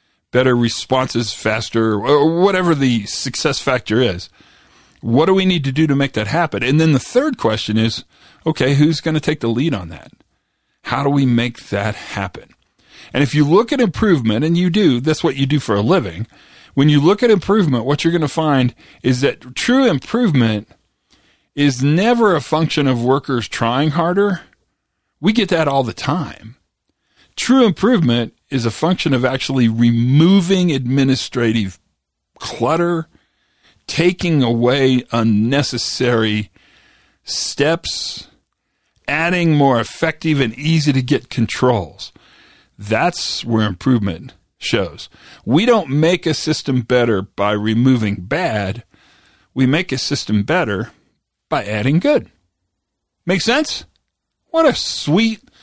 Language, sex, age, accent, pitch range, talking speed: English, male, 40-59, American, 120-170 Hz, 140 wpm